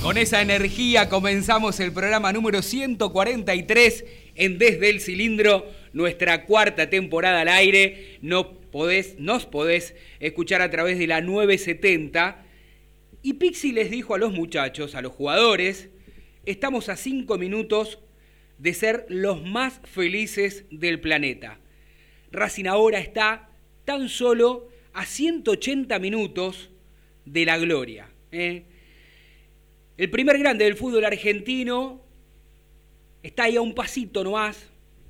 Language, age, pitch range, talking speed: Spanish, 30-49, 180-230 Hz, 120 wpm